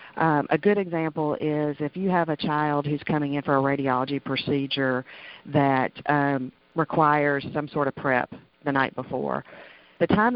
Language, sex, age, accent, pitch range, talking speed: English, female, 40-59, American, 135-155 Hz, 170 wpm